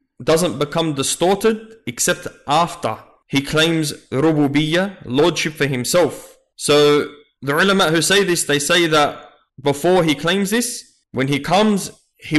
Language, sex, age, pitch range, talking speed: English, male, 20-39, 140-180 Hz, 135 wpm